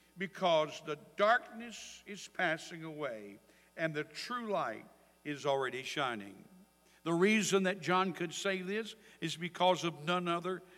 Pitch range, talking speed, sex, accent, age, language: 145-205 Hz, 140 wpm, male, American, 60-79, English